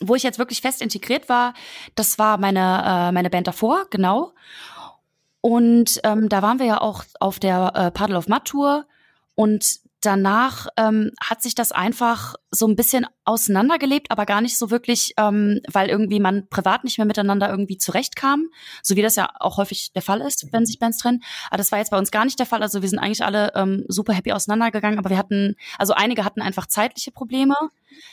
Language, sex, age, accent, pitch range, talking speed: German, female, 20-39, German, 190-235 Hz, 205 wpm